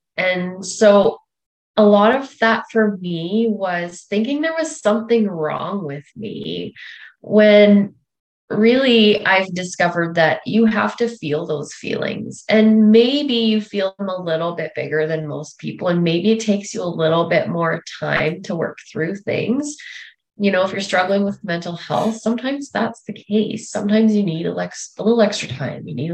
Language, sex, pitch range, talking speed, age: English, female, 175-225 Hz, 175 wpm, 20-39